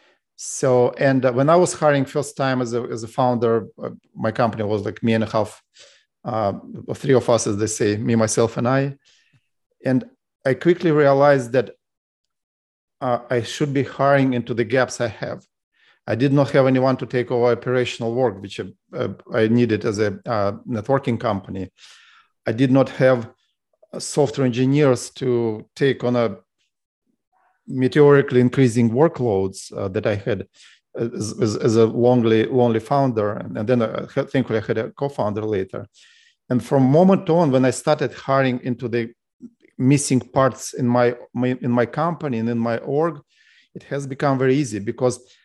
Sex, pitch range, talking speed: male, 115-140 Hz, 170 wpm